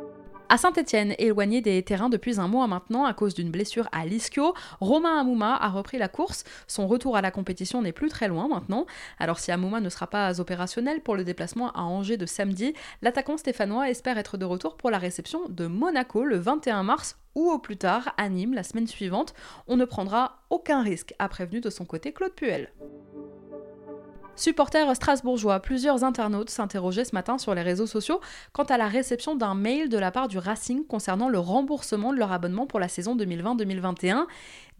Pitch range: 190-270 Hz